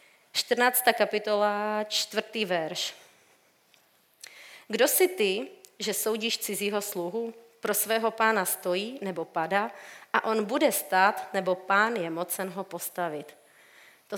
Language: Czech